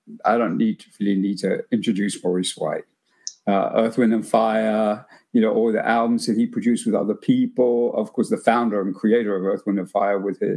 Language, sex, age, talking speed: English, male, 50-69, 205 wpm